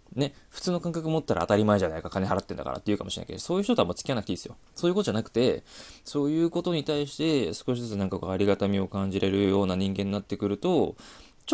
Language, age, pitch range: Japanese, 20-39, 95-120 Hz